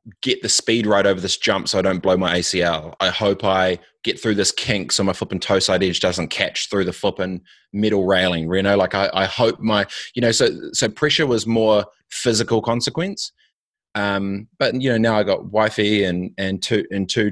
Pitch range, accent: 95-105 Hz, Australian